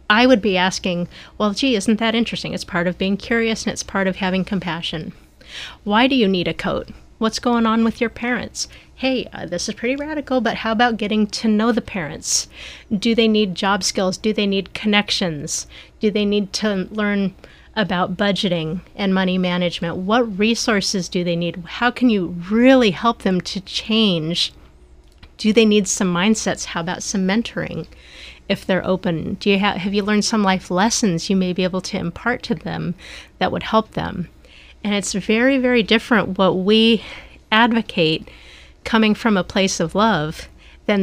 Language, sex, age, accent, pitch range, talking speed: English, female, 30-49, American, 180-220 Hz, 185 wpm